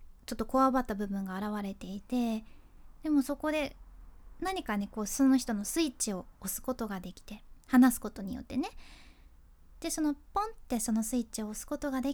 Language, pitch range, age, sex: Japanese, 220-280 Hz, 20-39, female